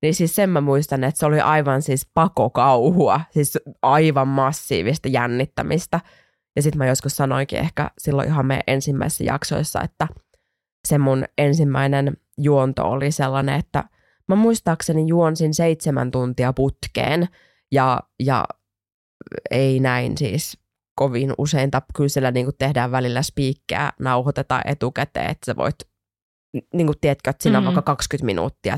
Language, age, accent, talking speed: Finnish, 20-39, native, 140 wpm